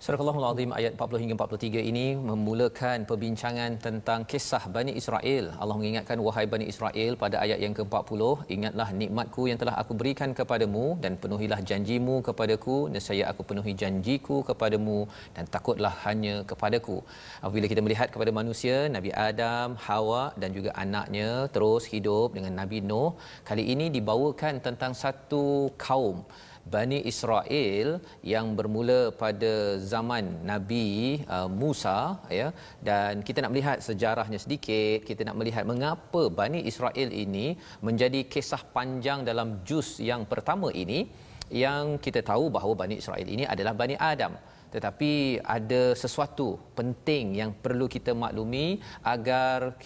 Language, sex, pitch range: Malayalam, male, 105-130 Hz